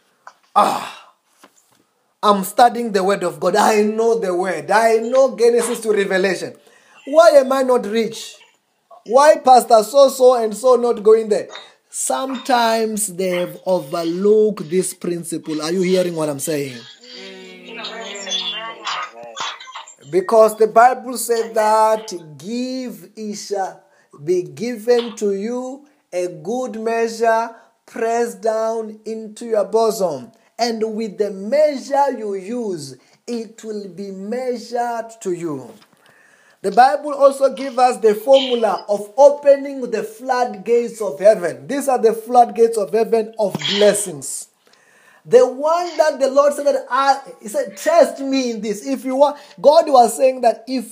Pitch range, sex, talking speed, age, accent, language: 205-265 Hz, male, 135 wpm, 30-49, South African, English